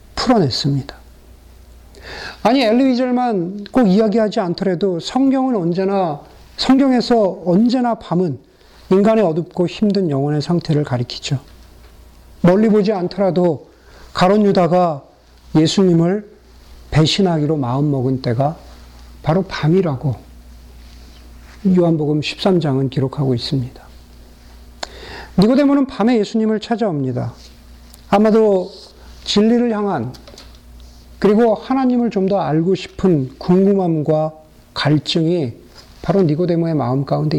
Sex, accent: male, native